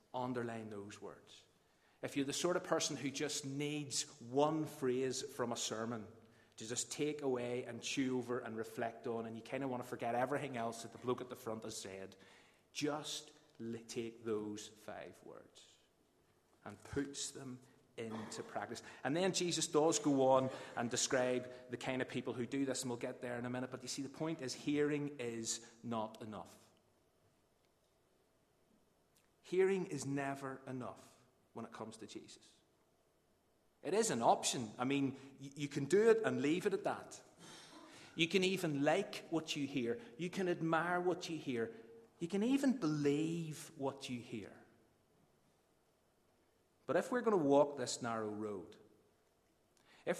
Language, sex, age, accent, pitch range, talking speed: English, male, 30-49, British, 120-150 Hz, 165 wpm